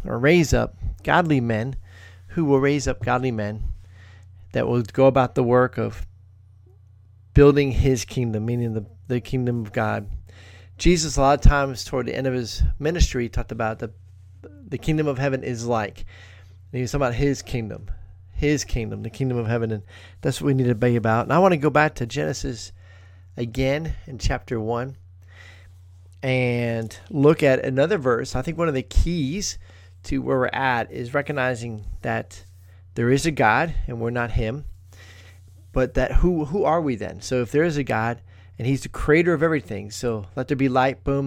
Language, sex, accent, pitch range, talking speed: English, male, American, 95-135 Hz, 190 wpm